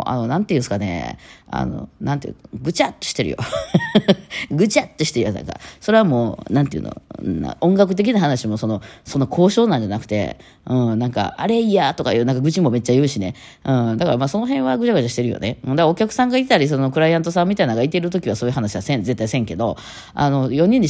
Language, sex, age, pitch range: Japanese, female, 20-39, 115-175 Hz